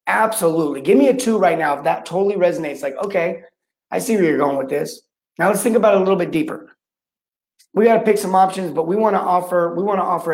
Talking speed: 255 wpm